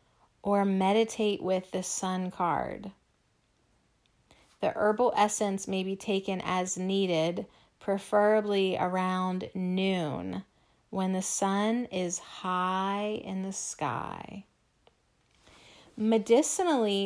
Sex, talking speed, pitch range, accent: female, 90 wpm, 185-210 Hz, American